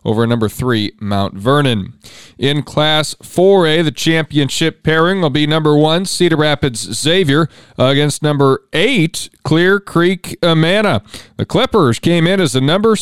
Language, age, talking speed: English, 40-59, 145 wpm